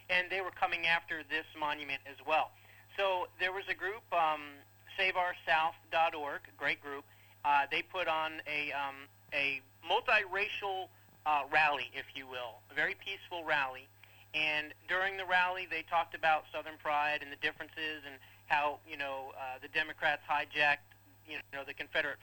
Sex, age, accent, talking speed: male, 40-59, American, 160 wpm